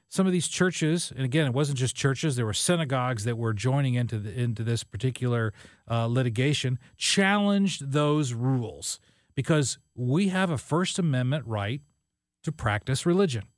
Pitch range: 120-160 Hz